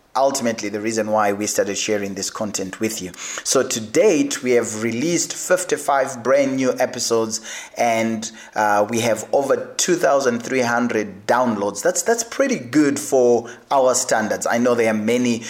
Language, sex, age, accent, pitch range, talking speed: English, male, 30-49, South African, 110-125 Hz, 155 wpm